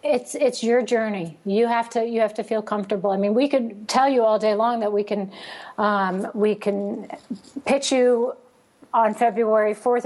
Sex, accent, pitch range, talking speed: female, American, 215-250 Hz, 190 wpm